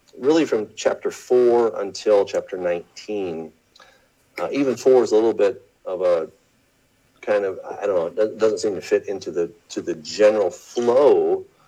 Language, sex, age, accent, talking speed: English, male, 50-69, American, 165 wpm